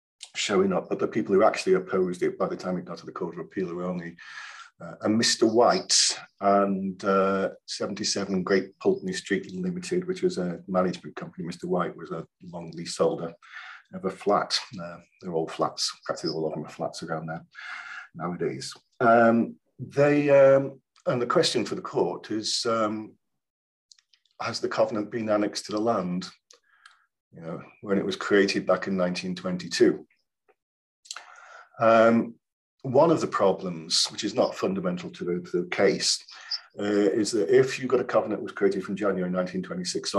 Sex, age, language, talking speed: male, 40-59, English, 175 wpm